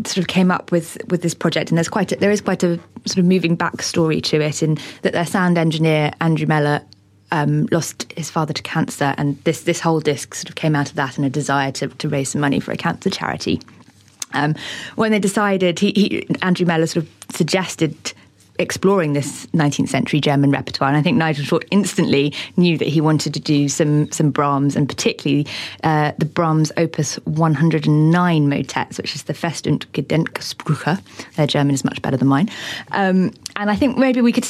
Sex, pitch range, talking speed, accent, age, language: female, 150-180 Hz, 210 wpm, British, 20-39, English